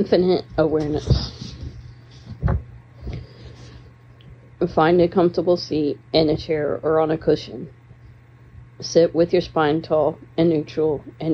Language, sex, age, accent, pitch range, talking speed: English, female, 40-59, American, 120-155 Hz, 110 wpm